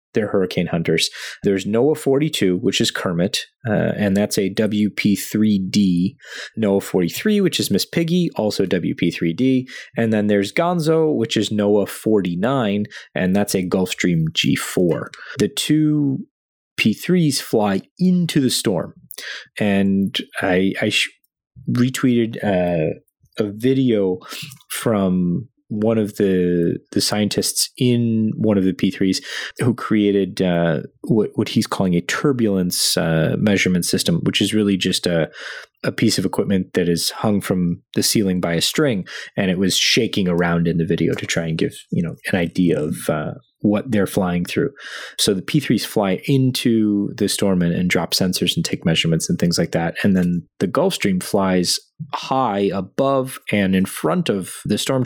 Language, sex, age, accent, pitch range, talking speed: English, male, 30-49, American, 90-120 Hz, 155 wpm